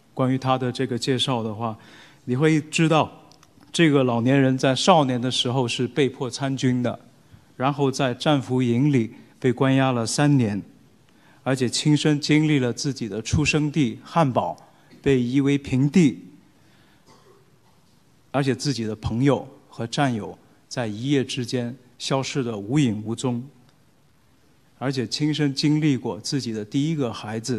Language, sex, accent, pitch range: Chinese, male, native, 120-145 Hz